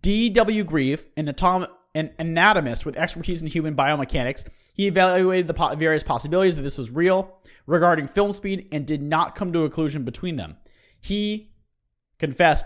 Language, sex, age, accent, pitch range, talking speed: English, male, 30-49, American, 130-175 Hz, 165 wpm